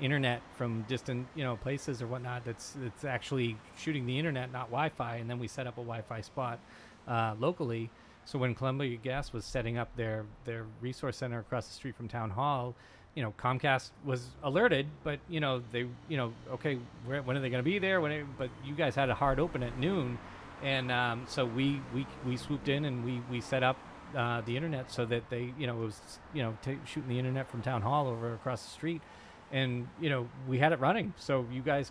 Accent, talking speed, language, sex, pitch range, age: American, 220 wpm, English, male, 120-145 Hz, 30-49